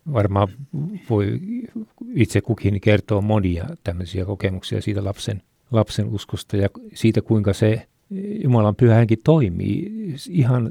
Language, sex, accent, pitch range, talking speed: Finnish, male, native, 105-130 Hz, 120 wpm